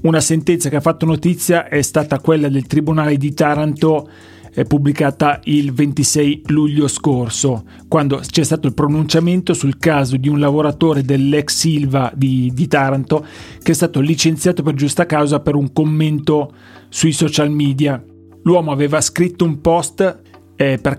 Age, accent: 30-49, native